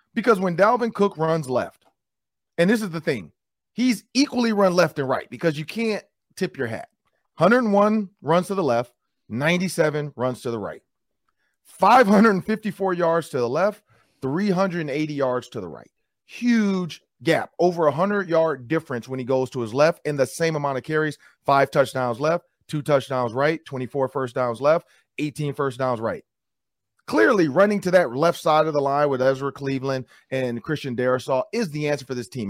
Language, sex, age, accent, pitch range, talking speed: English, male, 30-49, American, 135-195 Hz, 175 wpm